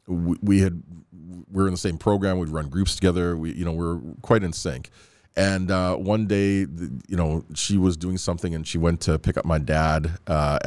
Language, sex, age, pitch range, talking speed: English, male, 40-59, 80-95 Hz, 220 wpm